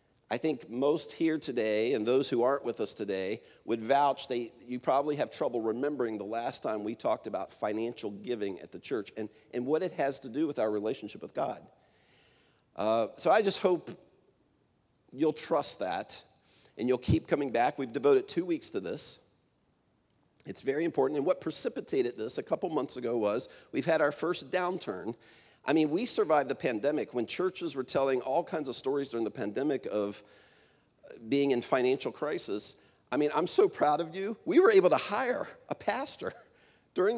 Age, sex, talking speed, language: 50-69, male, 185 wpm, English